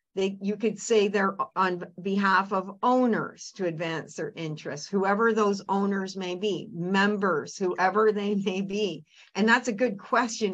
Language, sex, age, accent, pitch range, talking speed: English, female, 50-69, American, 190-230 Hz, 155 wpm